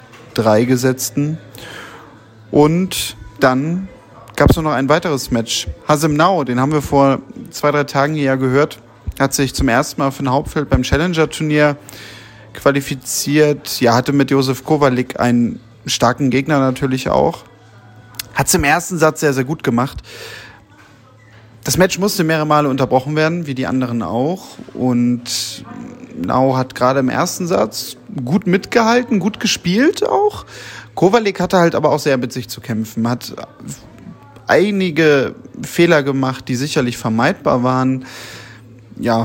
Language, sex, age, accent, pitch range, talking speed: German, male, 30-49, German, 125-155 Hz, 145 wpm